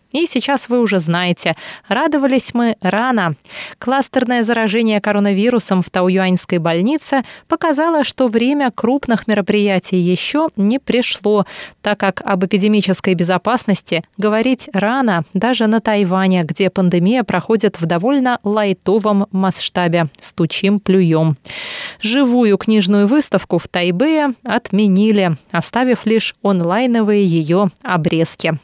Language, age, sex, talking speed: Russian, 20-39, female, 110 wpm